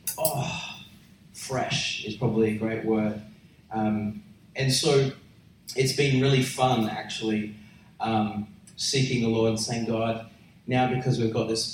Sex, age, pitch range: male, 30-49, 110-125 Hz